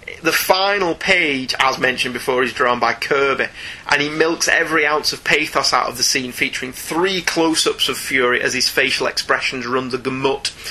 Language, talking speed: English, 185 wpm